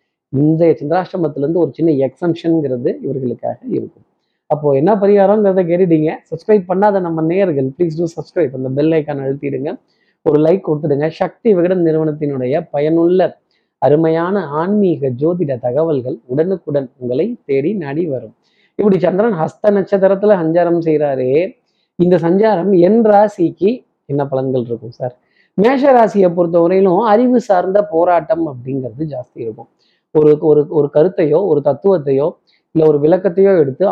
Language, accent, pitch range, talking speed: Tamil, native, 145-185 Hz, 120 wpm